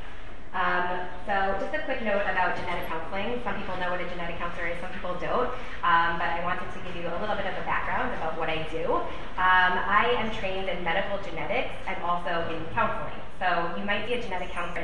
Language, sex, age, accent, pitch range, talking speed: English, female, 20-39, American, 170-205 Hz, 225 wpm